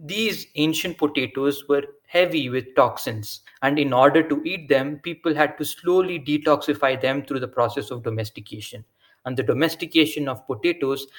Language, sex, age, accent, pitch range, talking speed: English, male, 20-39, Indian, 125-150 Hz, 155 wpm